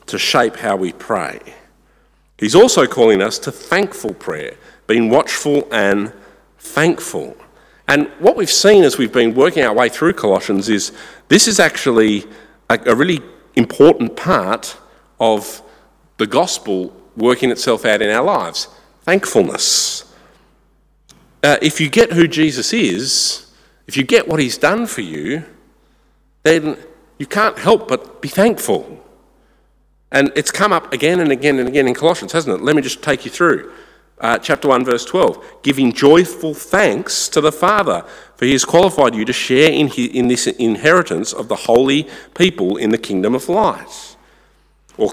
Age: 50-69